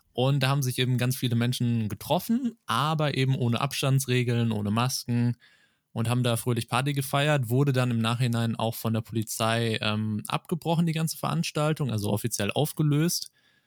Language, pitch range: German, 115-150 Hz